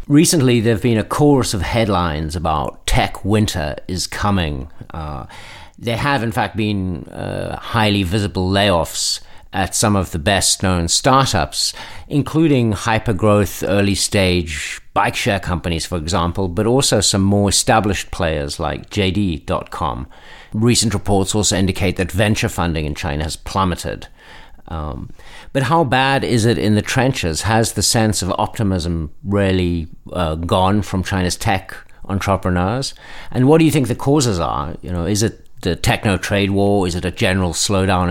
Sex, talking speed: male, 155 wpm